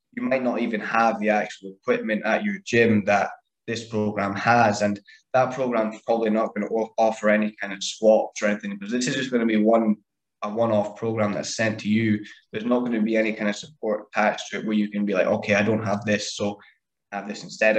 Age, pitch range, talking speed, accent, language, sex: 10-29, 105-115 Hz, 240 wpm, British, English, male